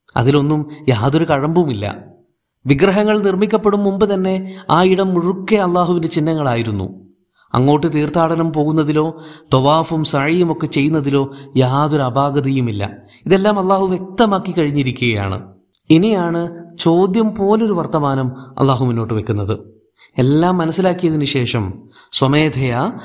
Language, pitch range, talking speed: Malayalam, 125-175 Hz, 95 wpm